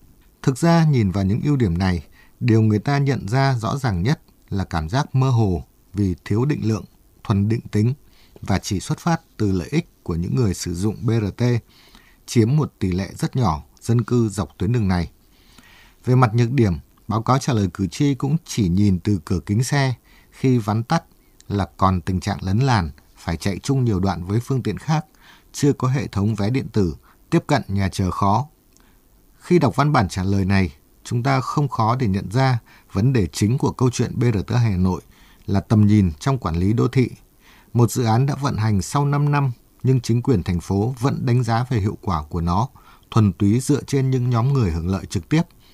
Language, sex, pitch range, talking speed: Vietnamese, male, 95-130 Hz, 215 wpm